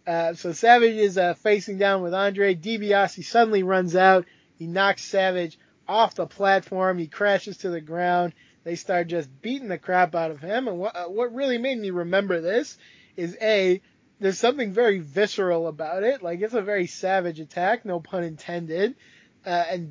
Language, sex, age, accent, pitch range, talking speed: English, male, 20-39, American, 175-205 Hz, 180 wpm